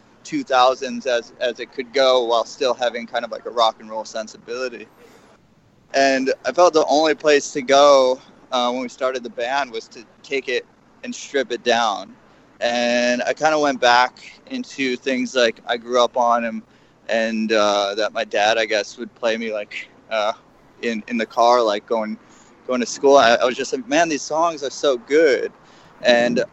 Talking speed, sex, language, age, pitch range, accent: 195 wpm, male, English, 20-39, 115-145 Hz, American